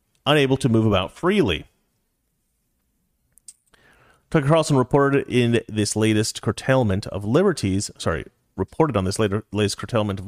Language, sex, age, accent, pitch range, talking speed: English, male, 30-49, American, 100-150 Hz, 130 wpm